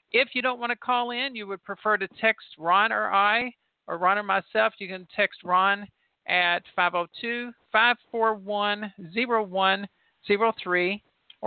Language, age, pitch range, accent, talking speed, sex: English, 50-69, 175-215 Hz, American, 130 wpm, male